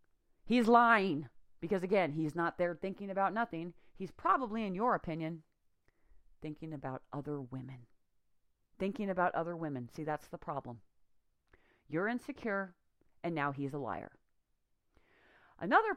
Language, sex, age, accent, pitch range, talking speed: English, female, 40-59, American, 155-230 Hz, 130 wpm